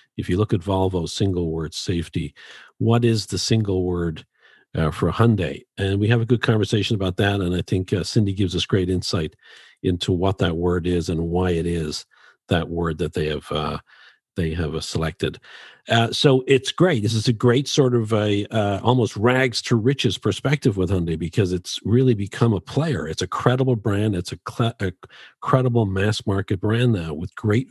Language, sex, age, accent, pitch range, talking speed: English, male, 50-69, American, 90-115 Hz, 200 wpm